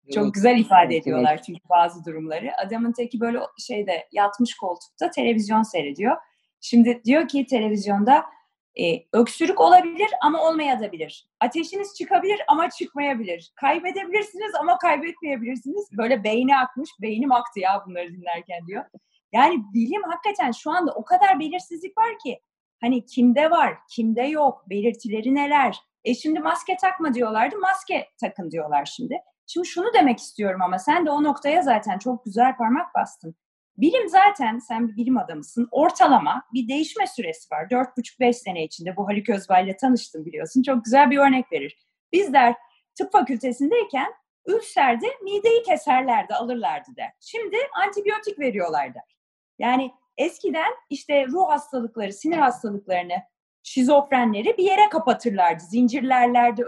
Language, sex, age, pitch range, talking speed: Turkish, female, 30-49, 225-345 Hz, 135 wpm